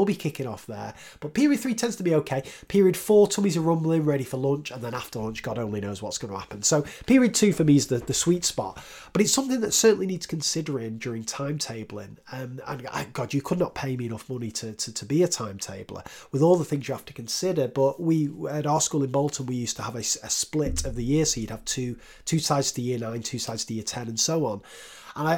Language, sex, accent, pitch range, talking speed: English, male, British, 120-175 Hz, 255 wpm